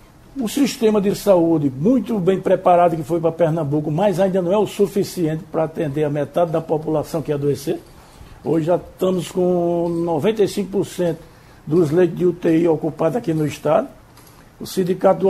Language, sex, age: Portuguese, male, 60-79